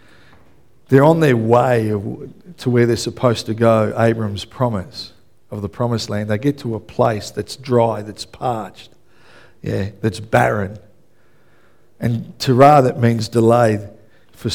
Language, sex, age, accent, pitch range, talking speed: English, male, 50-69, Australian, 105-125 Hz, 130 wpm